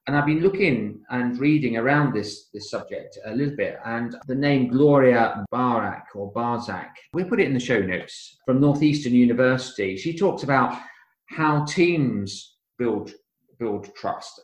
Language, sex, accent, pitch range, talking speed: English, male, British, 105-130 Hz, 160 wpm